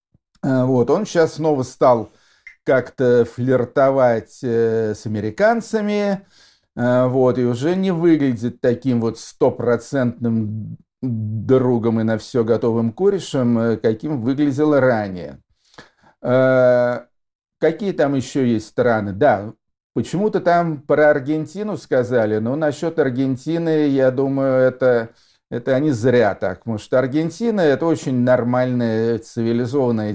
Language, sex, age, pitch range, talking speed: Russian, male, 50-69, 110-135 Hz, 105 wpm